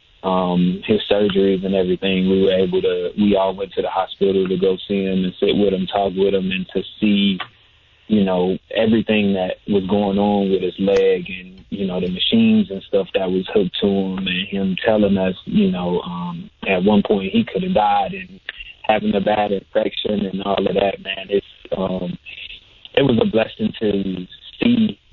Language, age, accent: English, 20-39, American